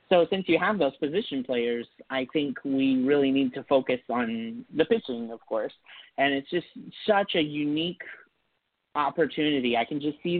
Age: 30-49